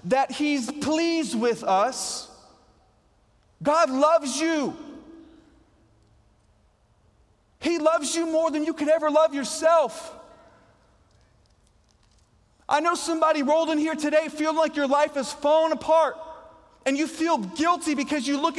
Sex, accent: male, American